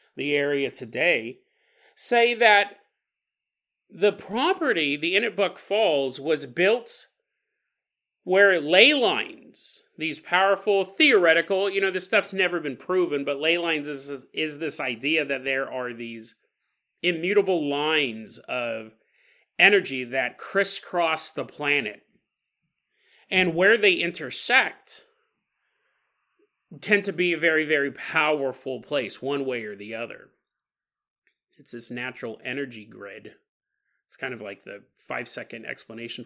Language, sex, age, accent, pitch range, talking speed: English, male, 30-49, American, 140-205 Hz, 120 wpm